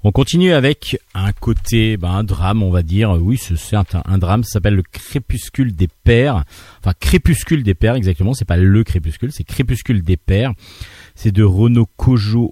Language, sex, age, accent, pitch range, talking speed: French, male, 40-59, French, 95-125 Hz, 185 wpm